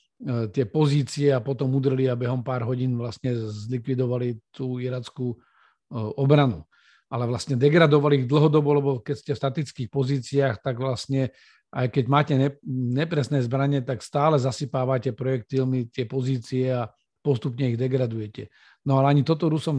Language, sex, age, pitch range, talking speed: Slovak, male, 50-69, 125-145 Hz, 145 wpm